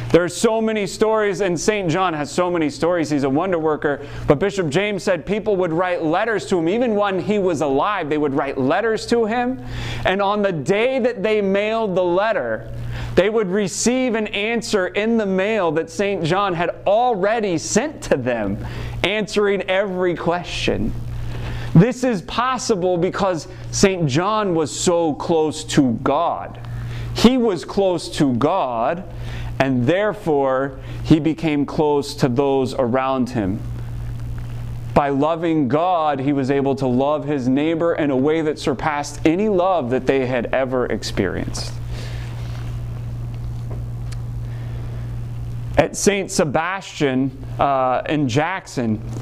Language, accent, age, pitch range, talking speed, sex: English, American, 30-49, 120-190 Hz, 145 wpm, male